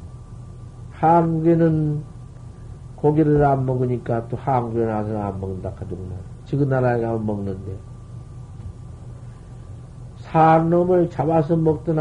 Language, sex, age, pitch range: Korean, male, 50-69, 115-135 Hz